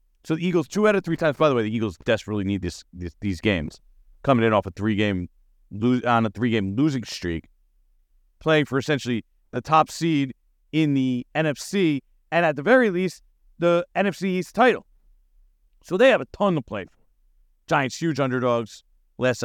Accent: American